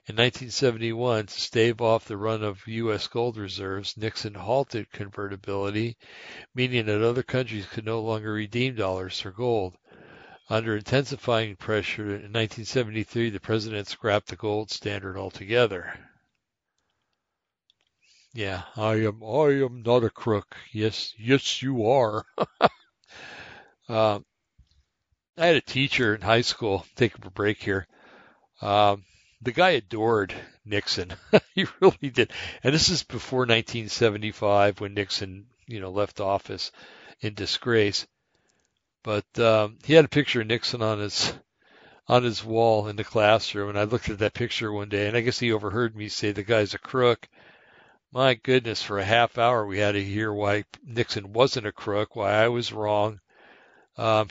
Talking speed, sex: 150 wpm, male